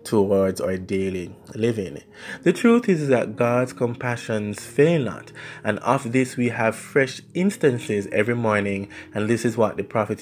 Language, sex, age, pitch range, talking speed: English, male, 20-39, 105-135 Hz, 160 wpm